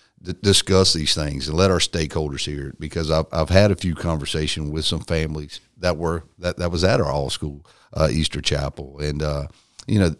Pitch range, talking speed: 75-90 Hz, 205 wpm